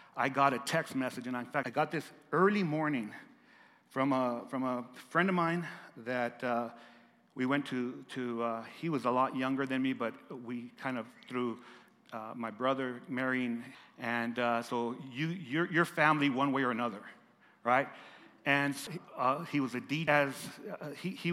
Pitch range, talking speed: 125-145 Hz, 185 wpm